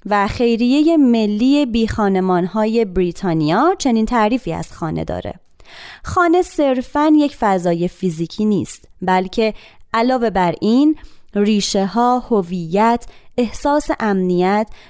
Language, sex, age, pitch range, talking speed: Persian, female, 20-39, 190-255 Hz, 105 wpm